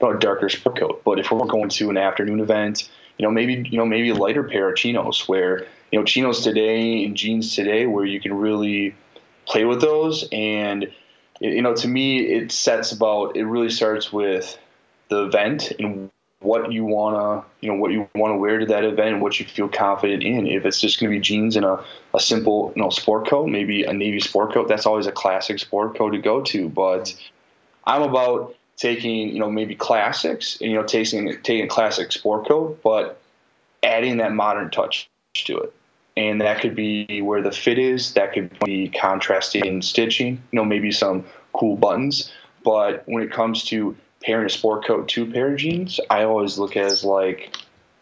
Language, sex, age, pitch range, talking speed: English, male, 20-39, 105-120 Hz, 205 wpm